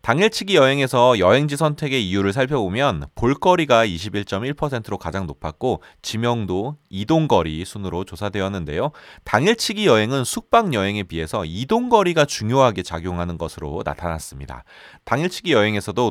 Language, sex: Korean, male